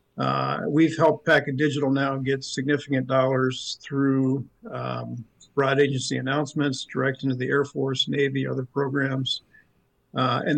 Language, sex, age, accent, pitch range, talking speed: English, male, 50-69, American, 130-145 Hz, 135 wpm